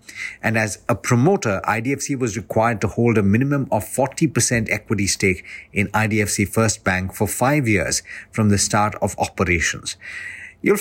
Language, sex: English, male